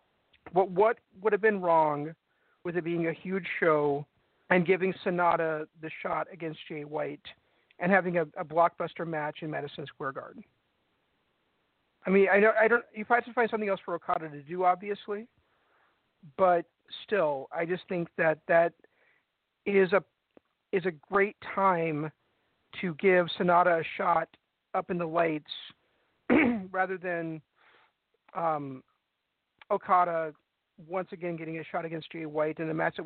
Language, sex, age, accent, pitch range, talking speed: English, male, 50-69, American, 160-190 Hz, 155 wpm